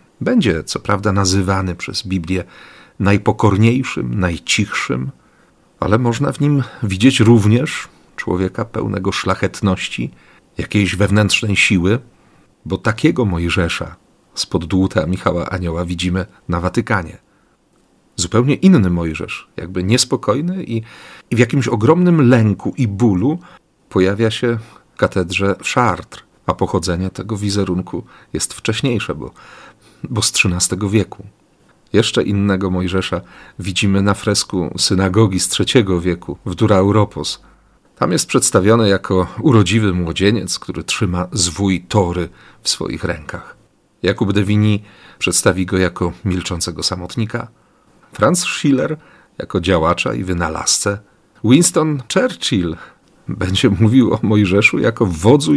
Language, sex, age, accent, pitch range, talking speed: Polish, male, 40-59, native, 90-115 Hz, 115 wpm